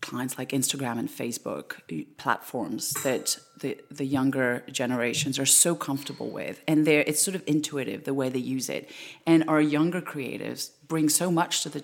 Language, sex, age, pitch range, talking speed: English, female, 30-49, 145-170 Hz, 175 wpm